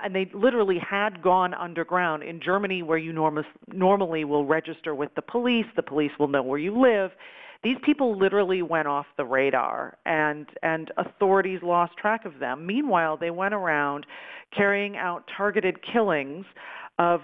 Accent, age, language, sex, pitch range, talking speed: American, 40-59, English, female, 165-210 Hz, 165 wpm